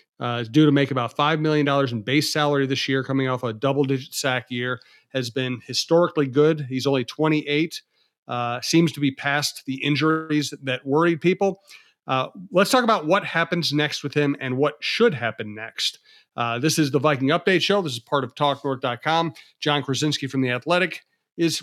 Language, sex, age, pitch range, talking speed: English, male, 40-59, 125-150 Hz, 190 wpm